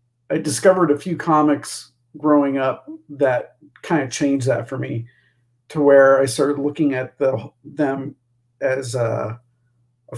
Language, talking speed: English, 145 wpm